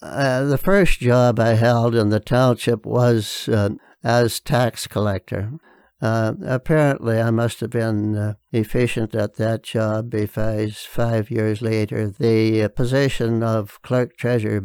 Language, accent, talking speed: English, American, 140 wpm